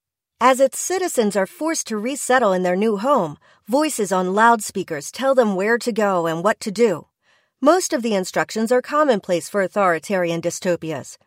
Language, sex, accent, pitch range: English, female, American, 180-245 Hz